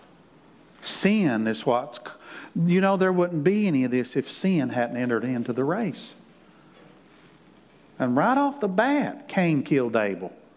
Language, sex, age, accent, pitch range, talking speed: English, male, 50-69, American, 145-185 Hz, 150 wpm